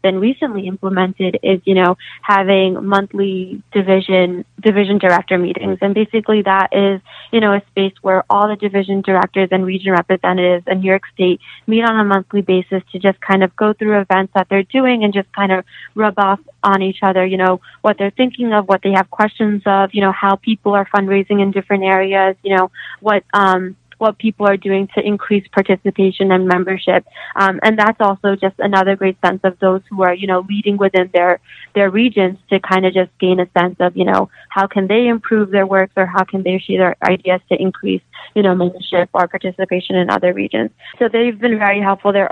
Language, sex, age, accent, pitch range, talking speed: English, female, 20-39, American, 190-205 Hz, 210 wpm